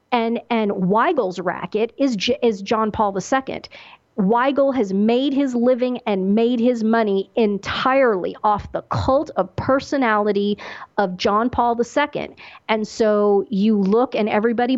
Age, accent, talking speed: 40-59, American, 140 wpm